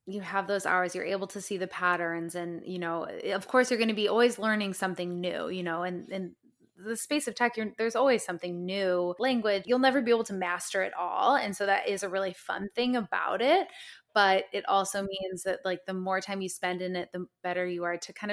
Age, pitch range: 20-39, 180-235 Hz